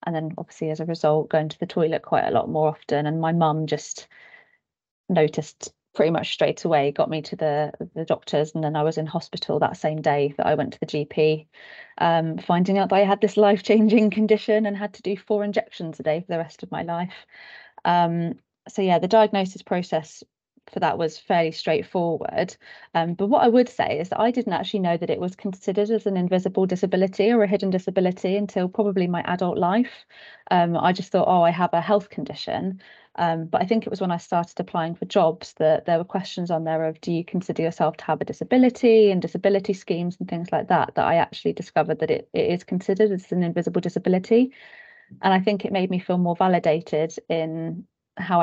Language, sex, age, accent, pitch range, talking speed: English, female, 30-49, British, 165-205 Hz, 215 wpm